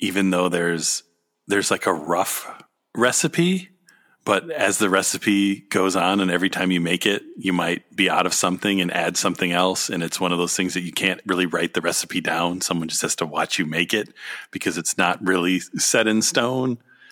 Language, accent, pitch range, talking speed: English, American, 90-105 Hz, 205 wpm